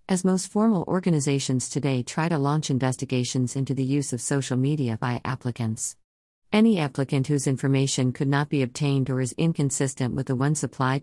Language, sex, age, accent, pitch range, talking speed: English, female, 50-69, American, 130-155 Hz, 175 wpm